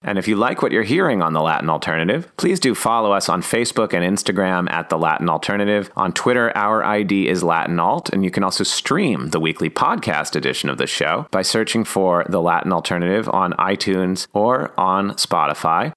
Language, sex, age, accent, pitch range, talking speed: English, male, 30-49, American, 85-100 Hz, 195 wpm